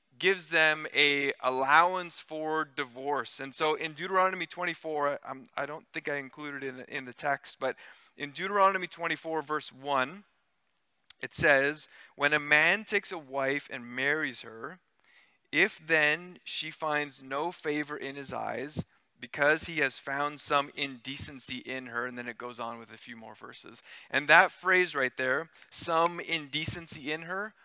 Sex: male